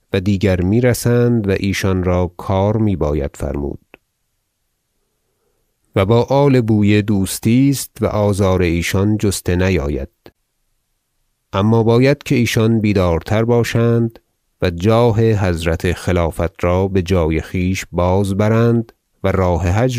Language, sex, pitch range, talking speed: Persian, male, 90-115 Hz, 115 wpm